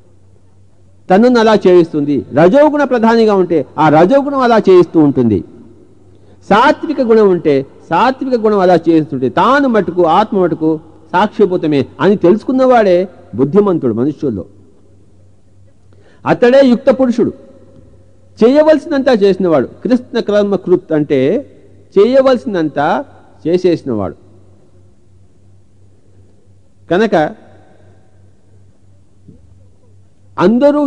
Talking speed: 70 wpm